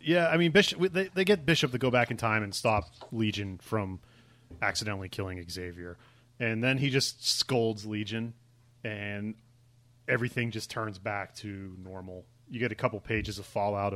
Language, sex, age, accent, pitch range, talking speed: English, male, 30-49, American, 100-120 Hz, 170 wpm